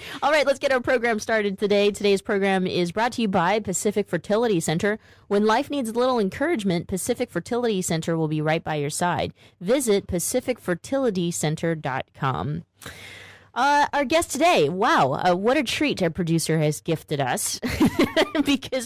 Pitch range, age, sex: 155-210 Hz, 20-39, female